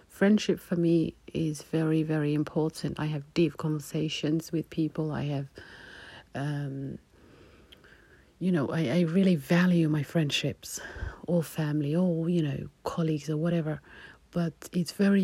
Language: English